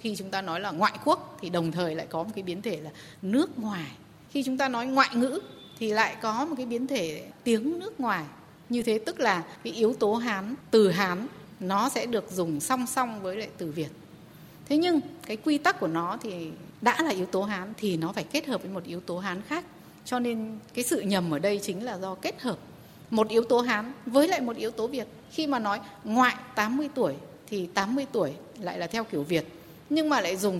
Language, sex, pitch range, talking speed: Vietnamese, female, 180-245 Hz, 235 wpm